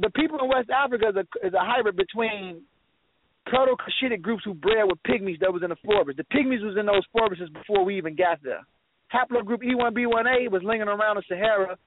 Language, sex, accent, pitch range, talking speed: English, male, American, 185-230 Hz, 205 wpm